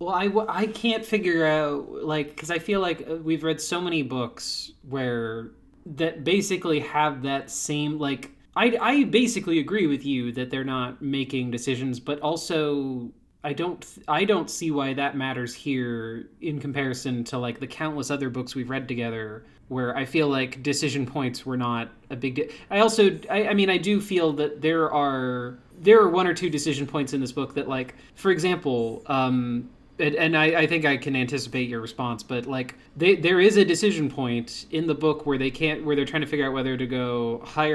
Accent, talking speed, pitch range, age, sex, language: American, 200 wpm, 125-155 Hz, 20-39, male, English